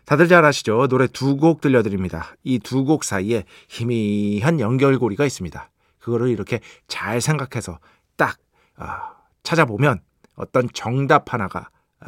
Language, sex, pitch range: Korean, male, 110-155 Hz